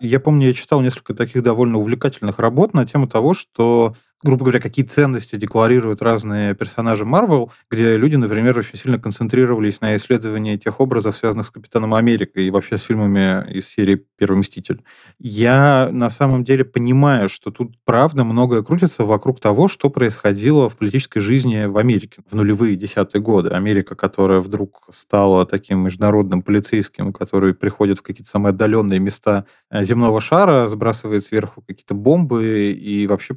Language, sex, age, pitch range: Russian, male, 20-39, 105-125 Hz